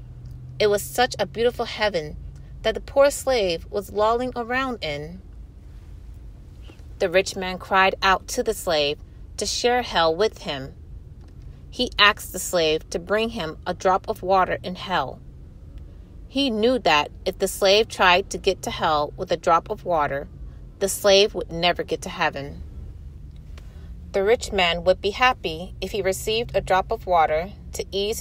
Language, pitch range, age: English, 125-210 Hz, 30-49